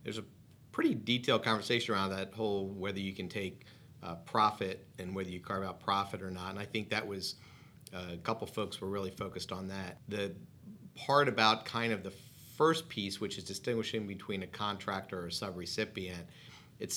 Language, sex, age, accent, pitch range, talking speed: English, male, 50-69, American, 95-120 Hz, 190 wpm